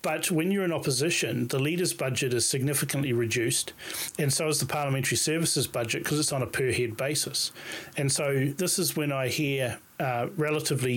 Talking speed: 180 wpm